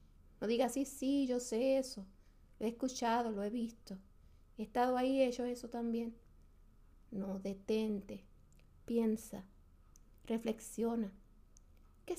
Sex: female